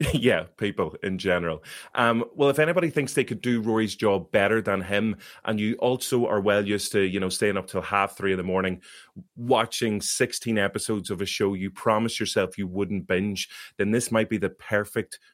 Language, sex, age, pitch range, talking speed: English, male, 30-49, 95-120 Hz, 205 wpm